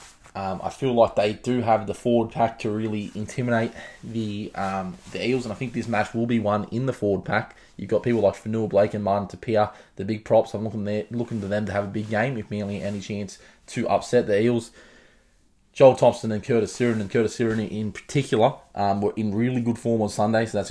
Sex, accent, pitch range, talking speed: male, Australian, 100-115 Hz, 230 wpm